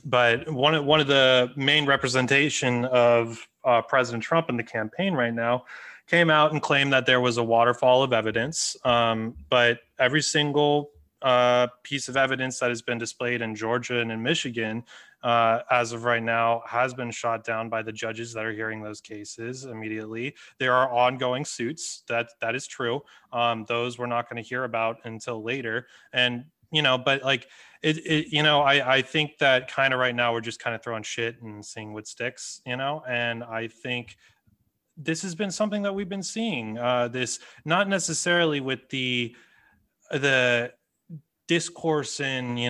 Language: English